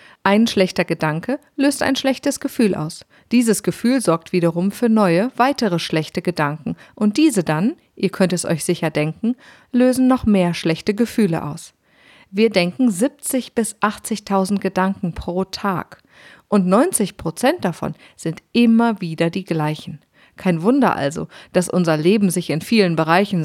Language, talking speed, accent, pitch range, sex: German, 150 wpm, German, 165-230 Hz, female